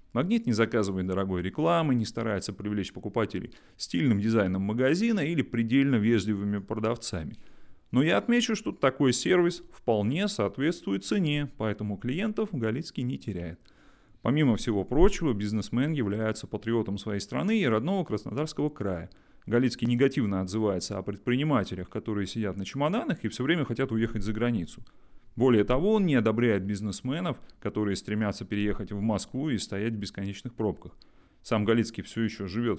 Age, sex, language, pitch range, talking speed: 30-49, male, Russian, 100-130 Hz, 145 wpm